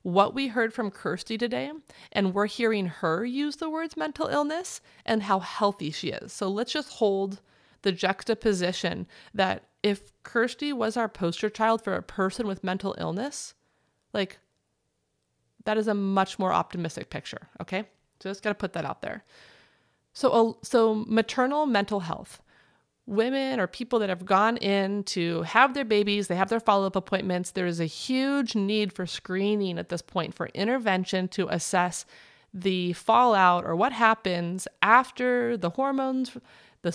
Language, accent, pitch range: English, American, 180-235 Hz